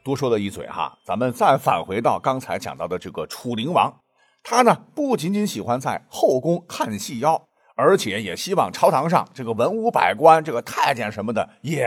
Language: Chinese